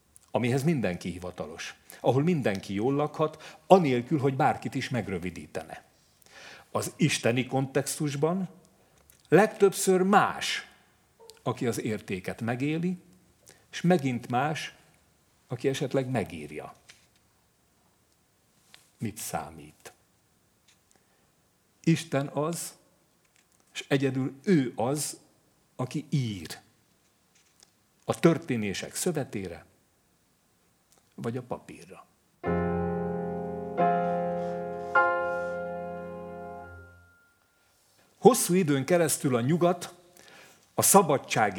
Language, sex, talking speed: Hungarian, male, 70 wpm